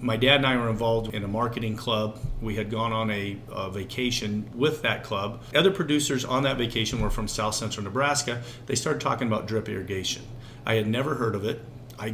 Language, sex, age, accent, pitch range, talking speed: English, male, 40-59, American, 115-140 Hz, 215 wpm